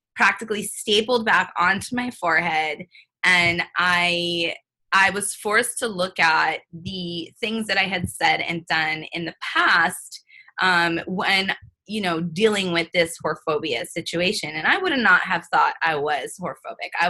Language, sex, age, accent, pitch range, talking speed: English, female, 20-39, American, 170-225 Hz, 155 wpm